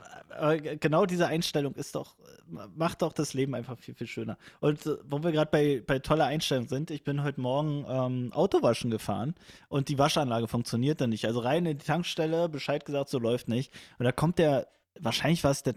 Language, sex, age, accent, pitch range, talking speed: German, male, 20-39, German, 130-160 Hz, 200 wpm